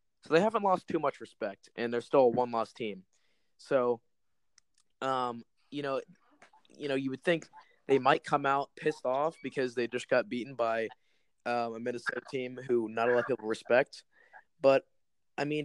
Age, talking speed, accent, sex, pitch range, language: 20-39, 185 wpm, American, male, 115-145 Hz, English